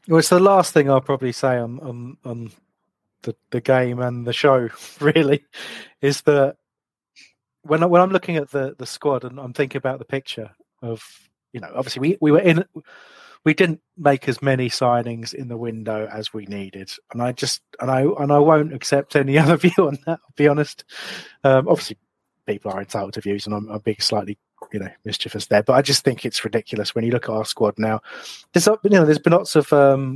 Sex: male